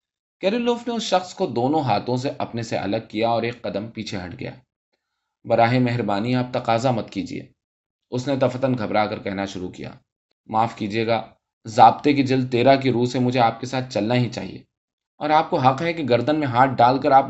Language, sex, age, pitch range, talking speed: Urdu, male, 20-39, 105-135 Hz, 210 wpm